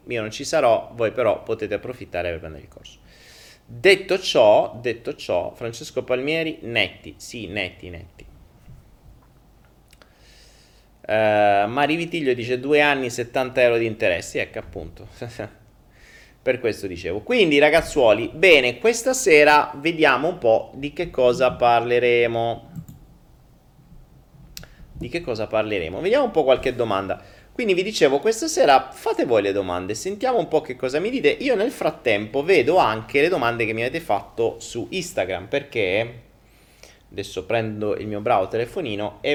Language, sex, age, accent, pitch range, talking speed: Italian, male, 30-49, native, 105-150 Hz, 145 wpm